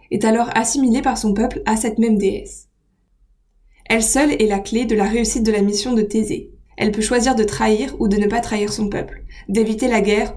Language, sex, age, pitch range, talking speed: French, female, 20-39, 210-235 Hz, 220 wpm